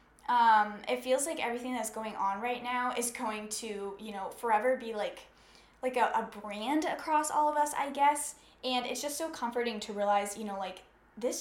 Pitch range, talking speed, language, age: 215-265 Hz, 205 wpm, English, 10-29